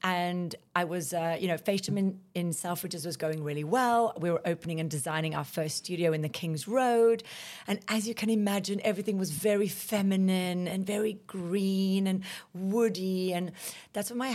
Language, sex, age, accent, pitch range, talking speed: English, female, 40-59, British, 165-195 Hz, 180 wpm